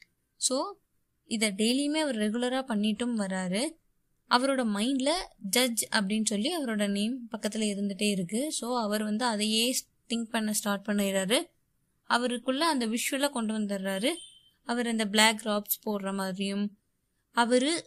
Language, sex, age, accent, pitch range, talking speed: Tamil, female, 20-39, native, 210-255 Hz, 125 wpm